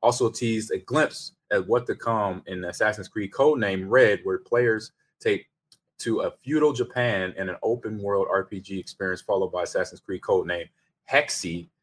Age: 20-39